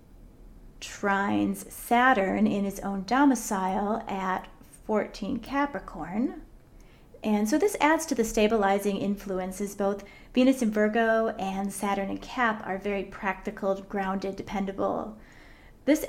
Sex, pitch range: female, 195-245 Hz